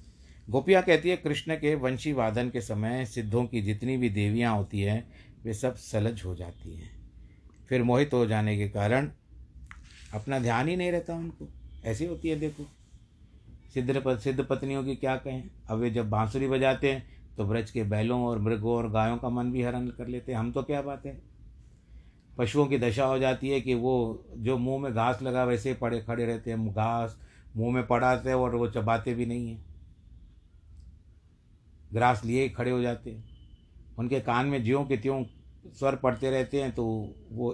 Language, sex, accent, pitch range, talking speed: Hindi, male, native, 105-130 Hz, 180 wpm